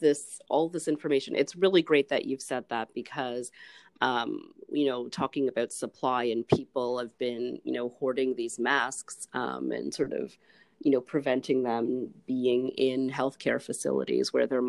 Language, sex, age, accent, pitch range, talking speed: English, female, 40-59, American, 125-155 Hz, 170 wpm